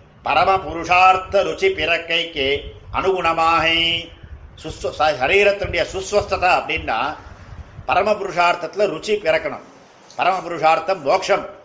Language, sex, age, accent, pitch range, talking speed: Tamil, male, 50-69, native, 155-190 Hz, 75 wpm